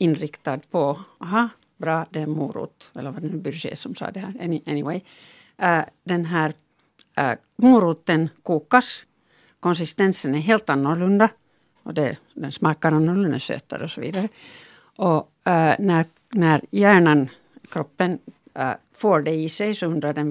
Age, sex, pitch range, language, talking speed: 60-79, female, 155-195 Hz, Finnish, 145 wpm